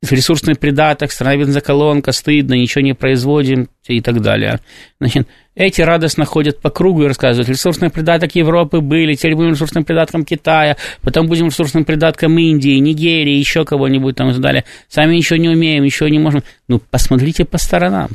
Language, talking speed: Russian, 165 wpm